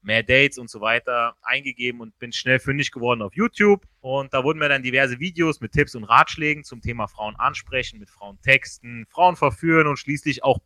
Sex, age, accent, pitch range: male, 30-49, German, 120-170 Hz